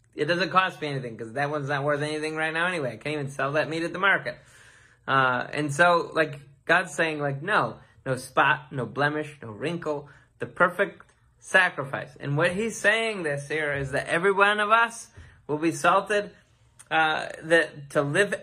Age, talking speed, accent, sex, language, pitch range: 20-39, 190 wpm, American, male, English, 140-185 Hz